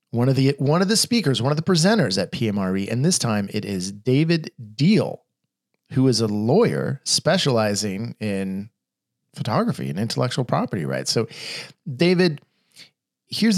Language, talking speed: English, 150 wpm